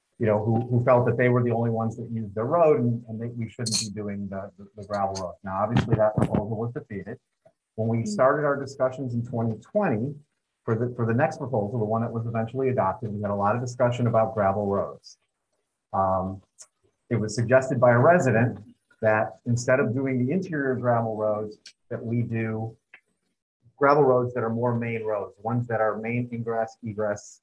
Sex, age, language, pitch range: male, 40-59, English, 105-125 Hz